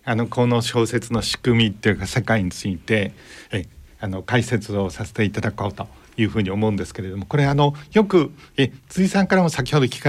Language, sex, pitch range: Japanese, male, 110-150 Hz